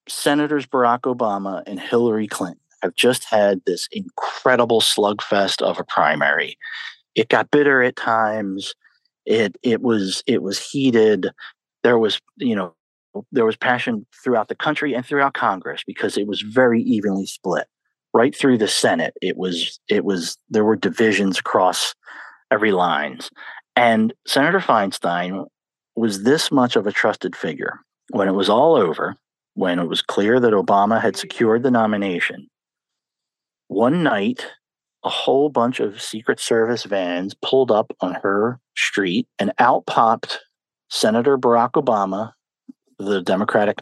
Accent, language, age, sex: American, English, 40-59, male